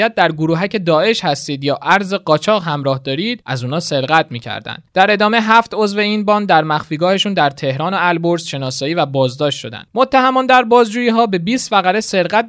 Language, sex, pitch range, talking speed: Persian, male, 150-215 Hz, 185 wpm